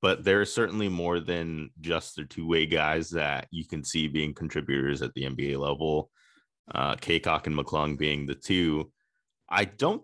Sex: male